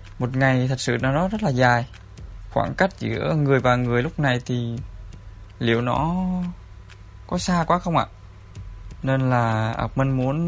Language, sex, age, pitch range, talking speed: Vietnamese, male, 20-39, 100-150 Hz, 160 wpm